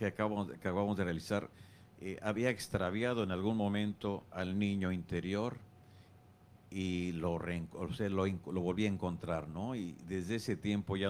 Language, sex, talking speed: English, male, 150 wpm